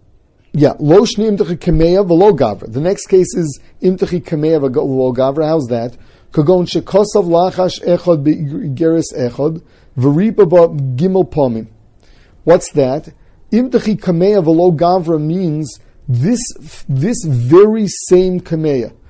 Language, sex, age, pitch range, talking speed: English, male, 40-59, 140-195 Hz, 120 wpm